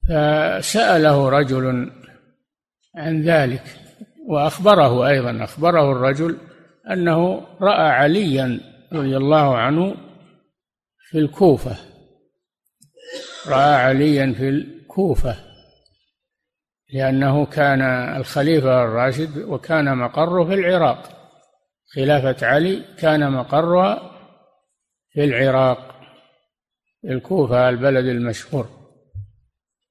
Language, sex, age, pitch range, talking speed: Arabic, male, 60-79, 130-165 Hz, 75 wpm